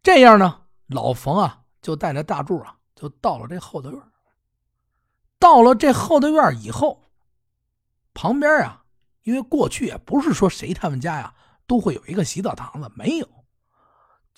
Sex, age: male, 50-69